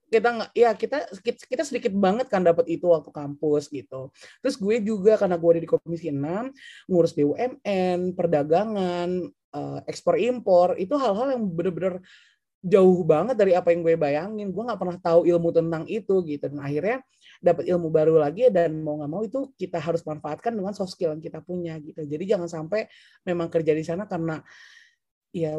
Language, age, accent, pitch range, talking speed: Indonesian, 20-39, native, 165-215 Hz, 180 wpm